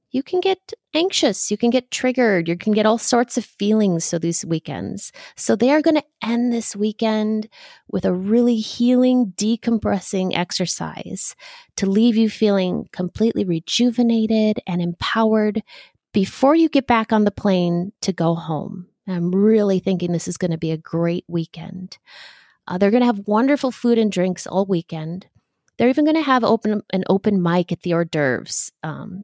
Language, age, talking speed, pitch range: English, 30-49, 175 wpm, 180-240 Hz